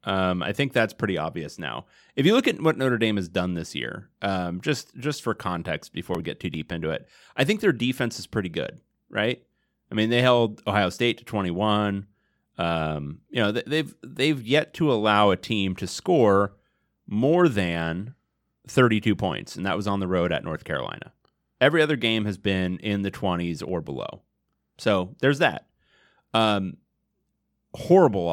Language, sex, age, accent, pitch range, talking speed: English, male, 30-49, American, 90-130 Hz, 180 wpm